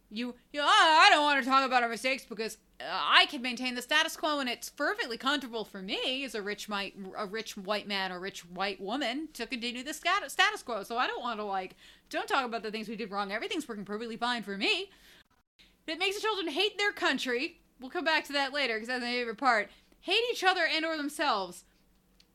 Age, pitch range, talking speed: 30-49, 220-320 Hz, 230 wpm